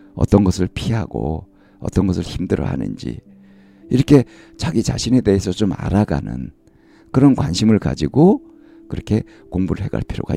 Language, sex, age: Korean, male, 50-69